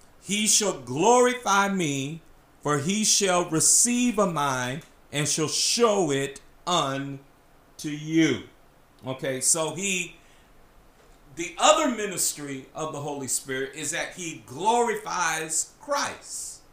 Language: English